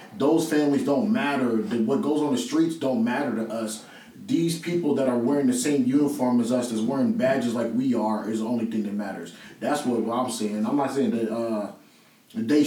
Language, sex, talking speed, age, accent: English, male, 215 wpm, 20-39, American